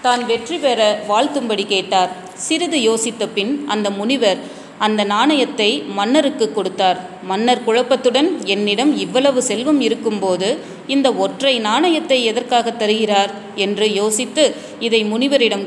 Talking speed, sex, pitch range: 110 wpm, female, 200-255 Hz